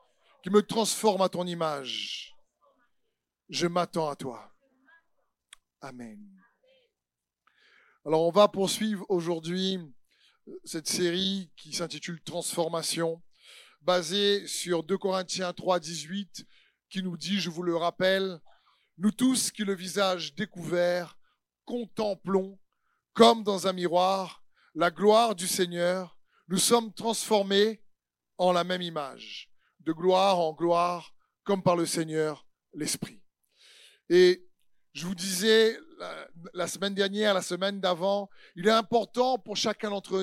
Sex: male